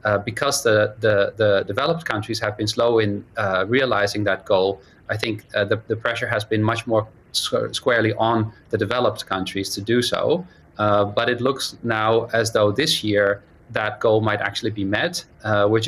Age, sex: 30-49, male